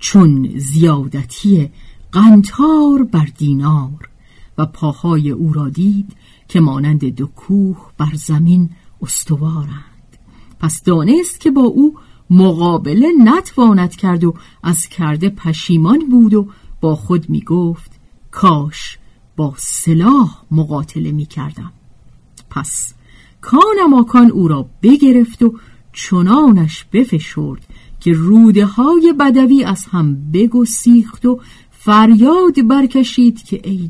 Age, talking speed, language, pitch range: 50-69, 110 wpm, Persian, 155-225 Hz